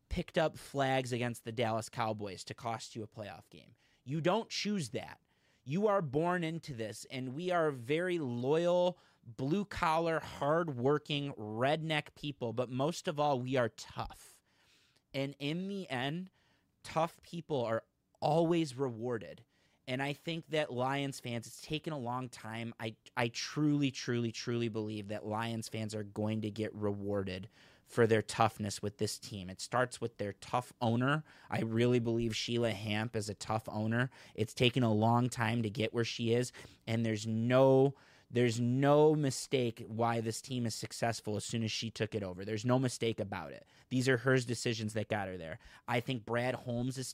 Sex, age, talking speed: male, 30-49, 175 wpm